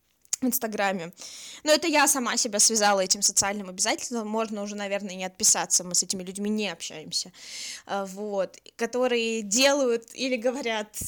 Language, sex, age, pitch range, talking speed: Russian, female, 20-39, 230-285 Hz, 155 wpm